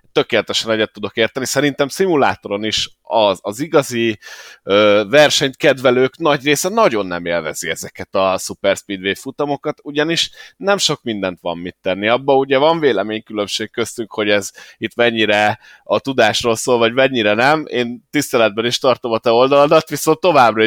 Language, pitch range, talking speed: Hungarian, 105-135 Hz, 155 wpm